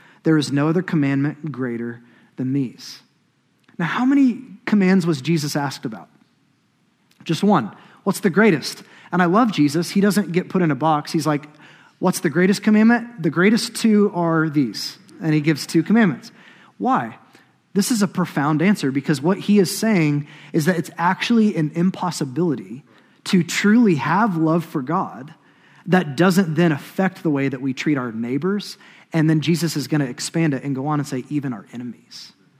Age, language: 30-49, English